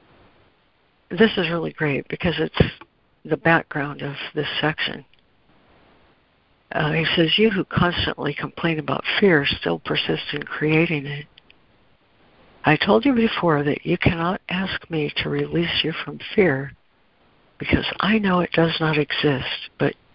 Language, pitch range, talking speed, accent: English, 145-170 Hz, 140 wpm, American